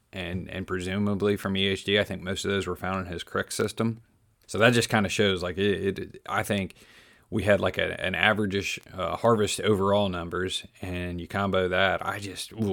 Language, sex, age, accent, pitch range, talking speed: English, male, 30-49, American, 95-110 Hz, 200 wpm